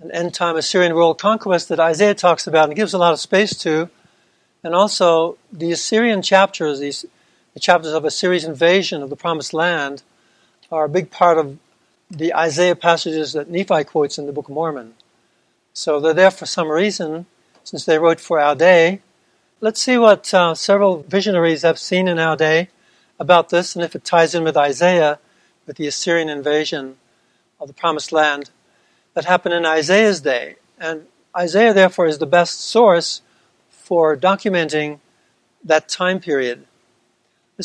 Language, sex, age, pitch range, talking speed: English, male, 60-79, 160-185 Hz, 165 wpm